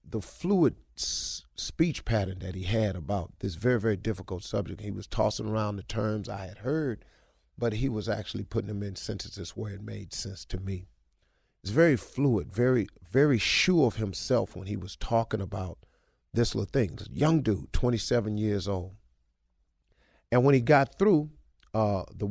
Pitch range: 95-110 Hz